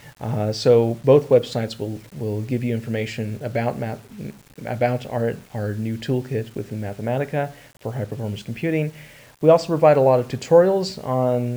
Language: English